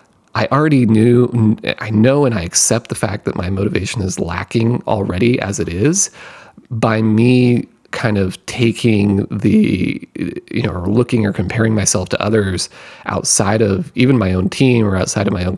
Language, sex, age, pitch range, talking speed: English, male, 30-49, 100-130 Hz, 175 wpm